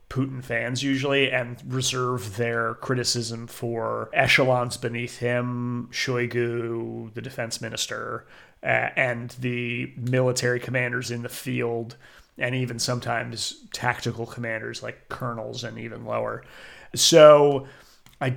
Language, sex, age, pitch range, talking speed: English, male, 30-49, 120-135 Hz, 115 wpm